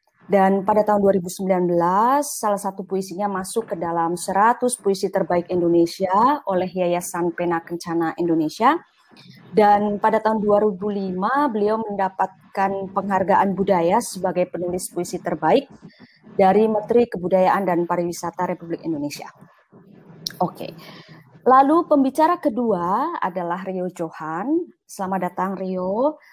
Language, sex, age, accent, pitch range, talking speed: English, female, 20-39, Indonesian, 180-220 Hz, 110 wpm